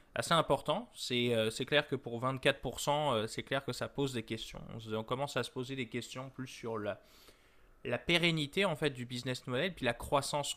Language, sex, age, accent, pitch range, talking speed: French, male, 20-39, French, 115-140 Hz, 205 wpm